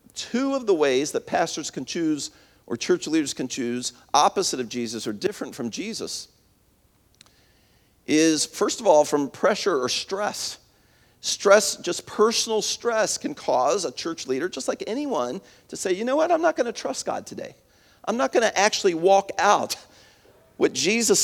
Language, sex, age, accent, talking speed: English, male, 50-69, American, 170 wpm